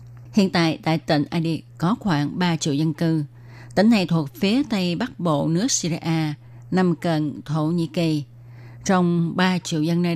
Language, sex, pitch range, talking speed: Vietnamese, female, 145-180 Hz, 175 wpm